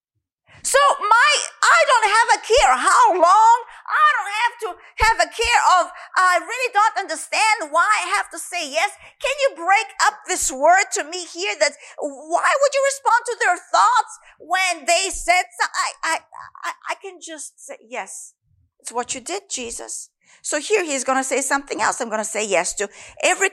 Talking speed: 190 wpm